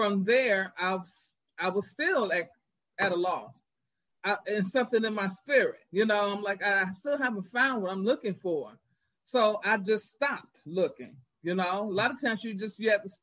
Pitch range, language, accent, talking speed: 180-220 Hz, English, American, 205 wpm